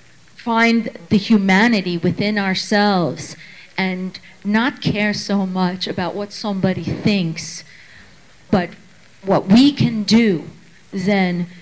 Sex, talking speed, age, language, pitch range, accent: female, 105 wpm, 40-59, English, 185-215 Hz, American